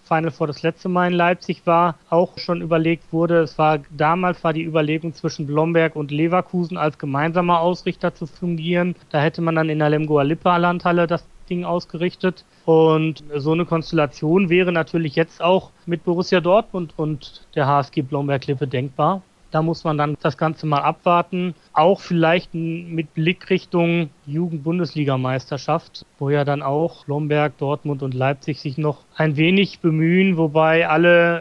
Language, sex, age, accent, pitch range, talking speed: German, male, 40-59, German, 145-165 Hz, 165 wpm